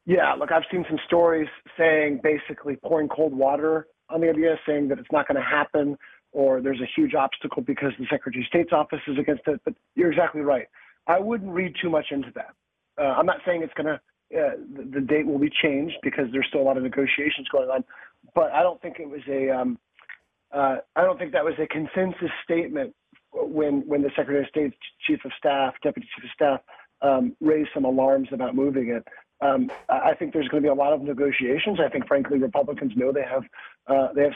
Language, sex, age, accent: English, male, 30-49, American